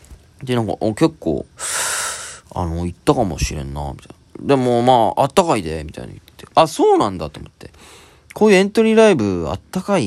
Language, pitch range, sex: Japanese, 80-135 Hz, male